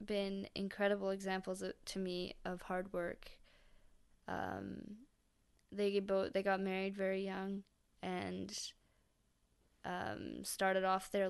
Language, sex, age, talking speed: English, female, 10-29, 110 wpm